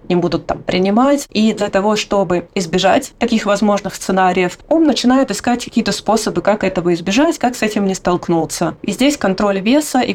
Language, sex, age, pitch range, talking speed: Russian, female, 20-39, 180-235 Hz, 175 wpm